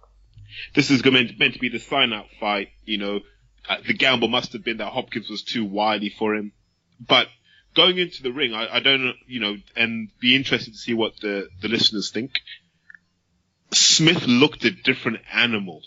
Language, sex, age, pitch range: English, male, 20-39, 105-135 Hz